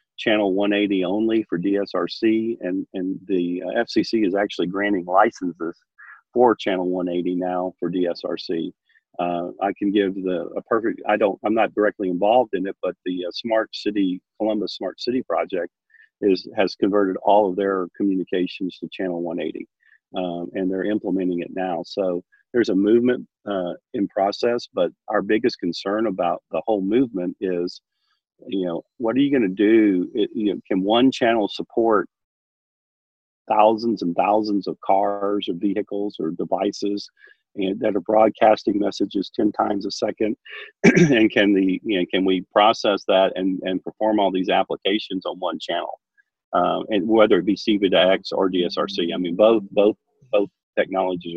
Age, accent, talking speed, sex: 40-59, American, 165 wpm, male